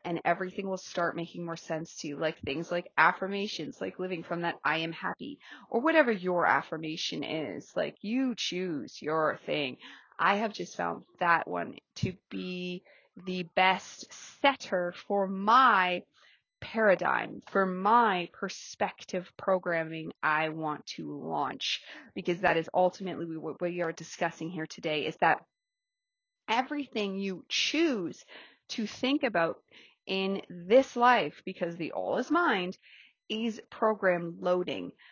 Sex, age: female, 30-49